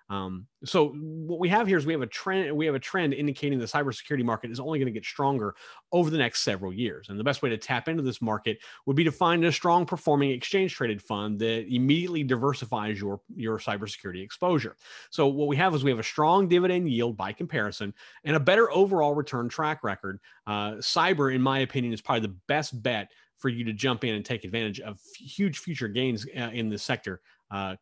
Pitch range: 110-150 Hz